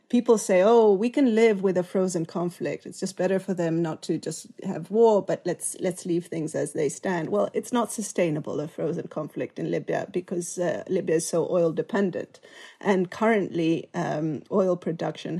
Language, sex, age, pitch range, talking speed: English, female, 30-49, 170-210 Hz, 190 wpm